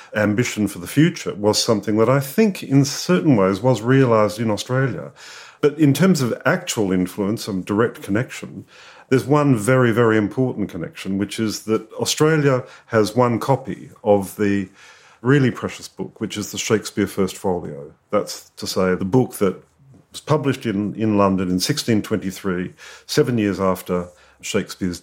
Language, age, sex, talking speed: English, 50-69, male, 160 wpm